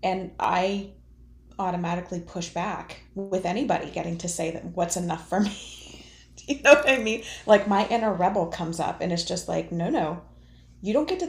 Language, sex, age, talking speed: English, female, 20-39, 195 wpm